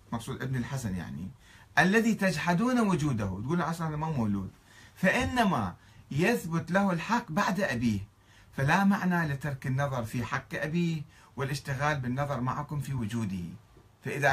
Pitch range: 105-165 Hz